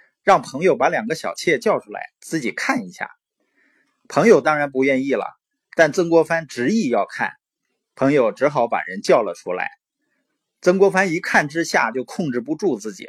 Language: Chinese